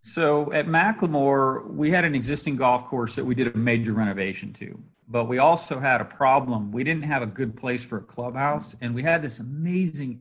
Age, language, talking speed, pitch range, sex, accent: 40-59, English, 210 wpm, 115-145 Hz, male, American